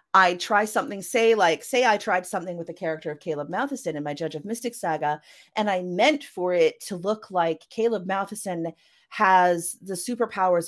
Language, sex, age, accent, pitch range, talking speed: English, female, 30-49, American, 170-225 Hz, 190 wpm